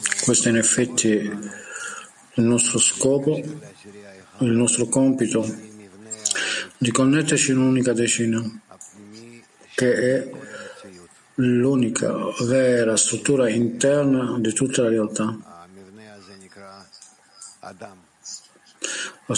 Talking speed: 80 wpm